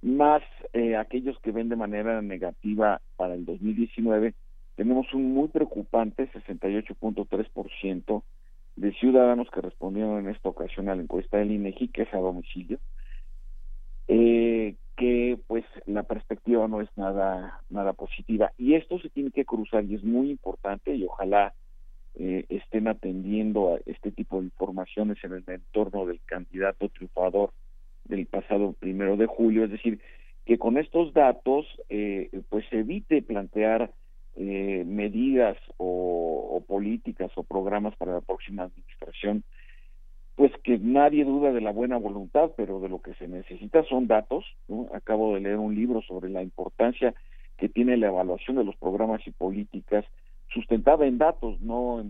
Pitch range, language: 95-115 Hz, Spanish